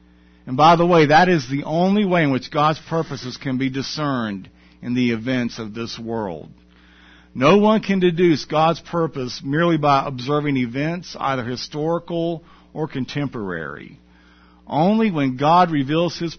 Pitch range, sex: 105-165 Hz, male